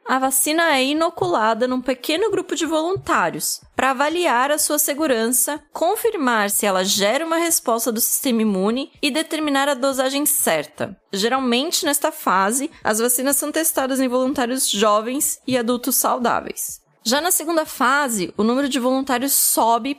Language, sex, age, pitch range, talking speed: Portuguese, female, 20-39, 240-300 Hz, 150 wpm